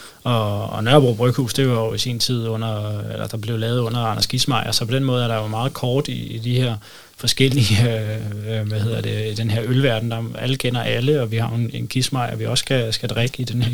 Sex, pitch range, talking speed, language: male, 115-130 Hz, 260 wpm, Danish